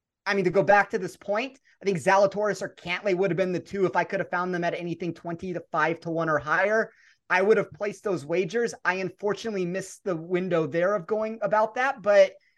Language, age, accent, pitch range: English, 30-49, American, 170-220 Hz